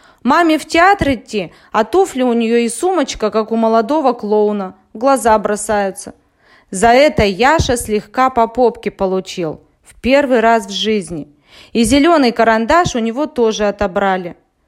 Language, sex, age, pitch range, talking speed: Russian, female, 20-39, 205-265 Hz, 145 wpm